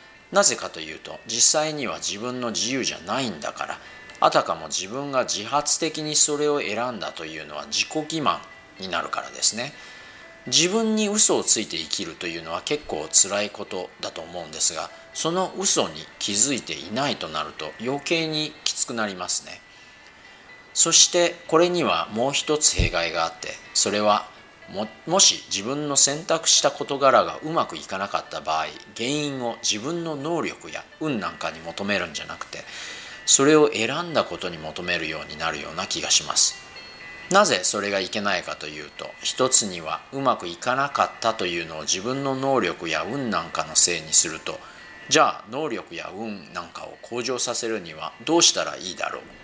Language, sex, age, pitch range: Japanese, male, 40-59, 105-155 Hz